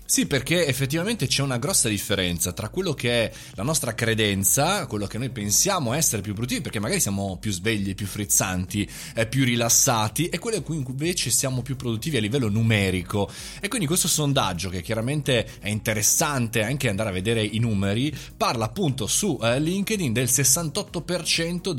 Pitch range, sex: 105-150 Hz, male